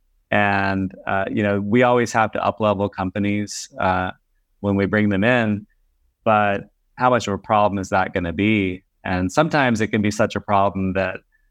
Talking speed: 190 wpm